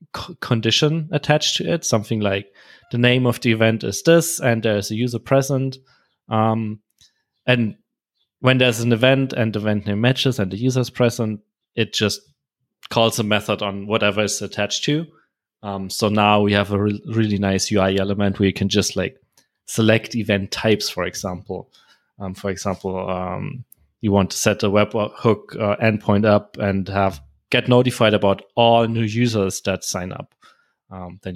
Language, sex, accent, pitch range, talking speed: English, male, German, 105-130 Hz, 175 wpm